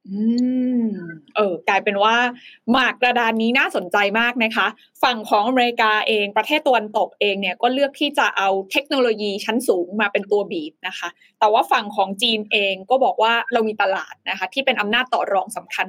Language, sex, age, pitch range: Thai, female, 20-39, 210-275 Hz